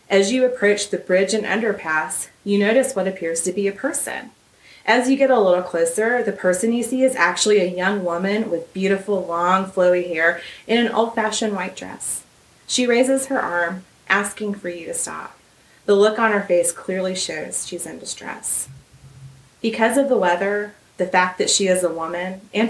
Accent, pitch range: American, 170-205 Hz